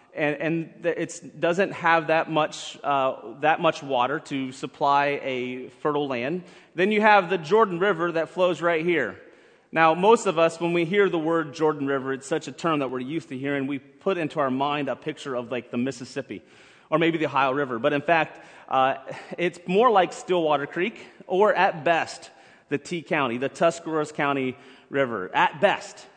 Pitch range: 140-175 Hz